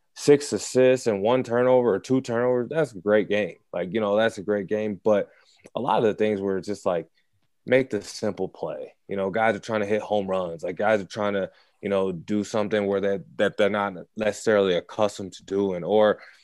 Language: English